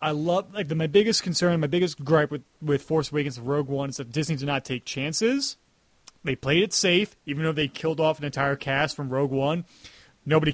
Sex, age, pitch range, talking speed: male, 30-49, 140-175 Hz, 230 wpm